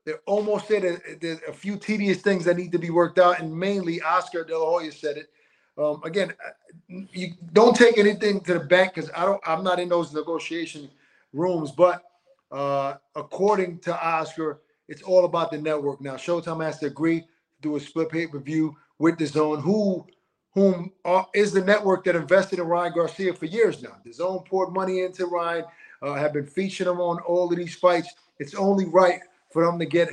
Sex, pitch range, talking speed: male, 155-185 Hz, 205 wpm